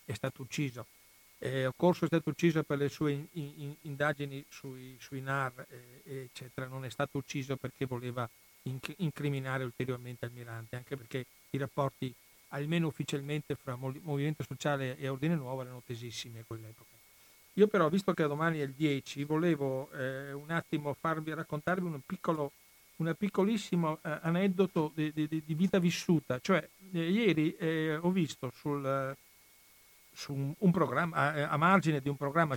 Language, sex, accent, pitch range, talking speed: Italian, male, native, 130-155 Hz, 160 wpm